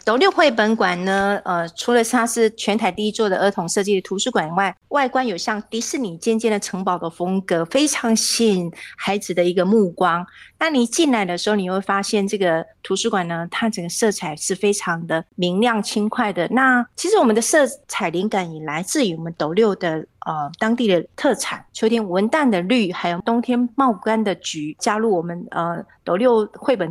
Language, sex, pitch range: Chinese, female, 185-245 Hz